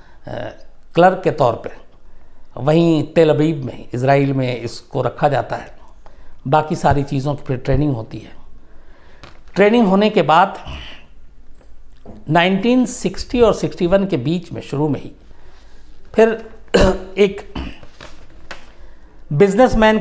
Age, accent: 60-79, native